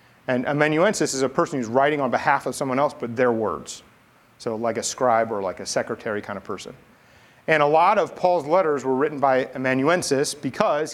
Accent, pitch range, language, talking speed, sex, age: American, 125-160 Hz, English, 205 wpm, male, 30-49